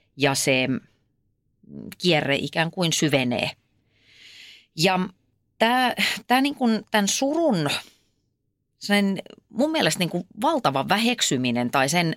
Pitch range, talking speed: 135-210 Hz, 105 wpm